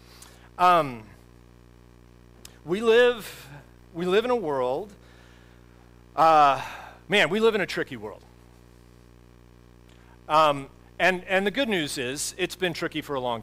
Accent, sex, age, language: American, male, 40-59, English